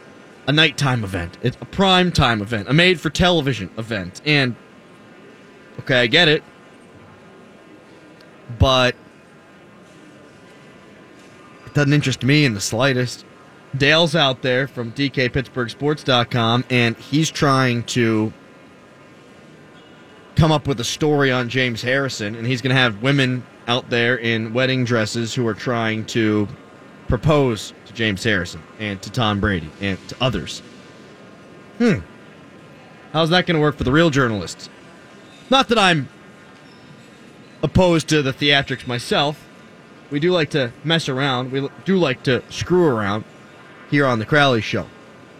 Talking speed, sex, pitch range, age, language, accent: 130 wpm, male, 115-150 Hz, 30-49, English, American